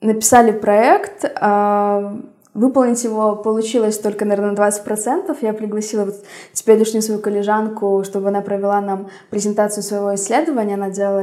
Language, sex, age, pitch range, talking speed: Russian, female, 20-39, 200-230 Hz, 135 wpm